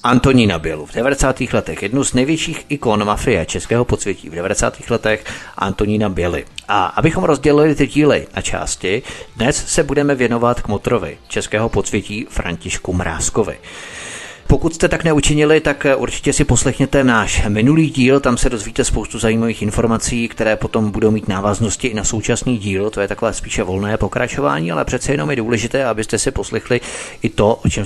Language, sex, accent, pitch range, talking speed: Czech, male, native, 100-130 Hz, 170 wpm